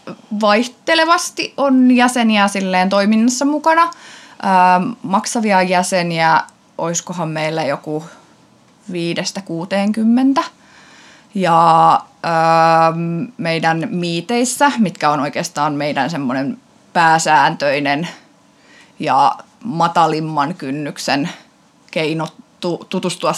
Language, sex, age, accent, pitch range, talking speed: Finnish, female, 20-39, native, 155-220 Hz, 65 wpm